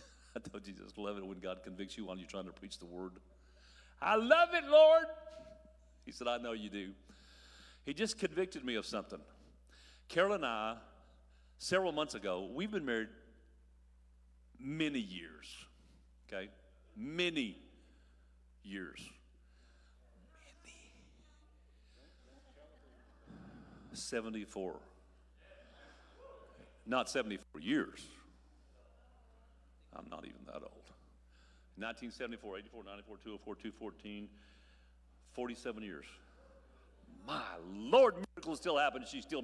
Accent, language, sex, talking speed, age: American, English, male, 110 wpm, 50-69